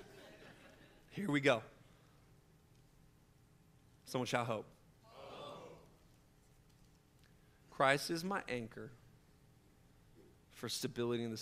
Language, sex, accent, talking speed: English, male, American, 75 wpm